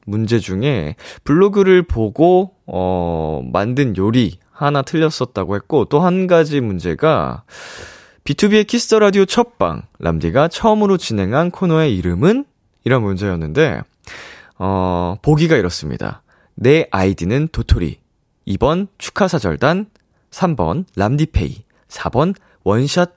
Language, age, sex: Korean, 20-39, male